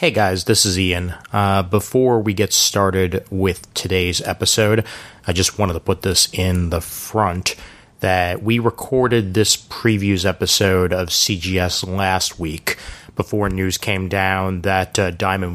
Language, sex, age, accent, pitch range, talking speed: English, male, 30-49, American, 90-110 Hz, 150 wpm